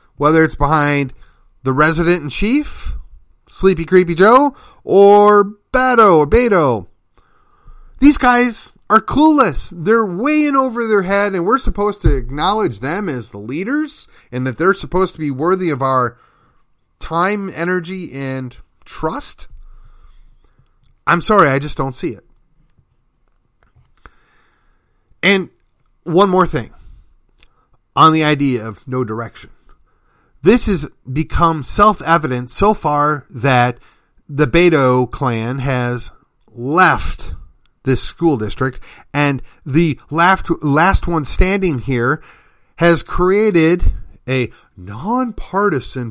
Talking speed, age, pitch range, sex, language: 115 wpm, 30-49, 130-200 Hz, male, English